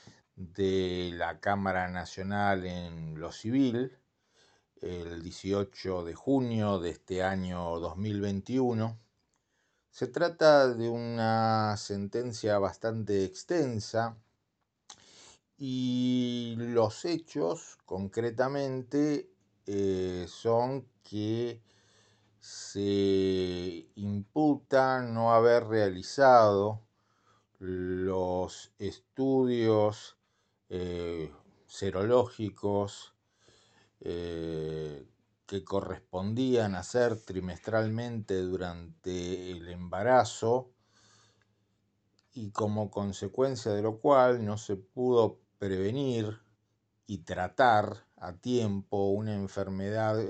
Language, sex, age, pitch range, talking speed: Spanish, male, 40-59, 95-115 Hz, 75 wpm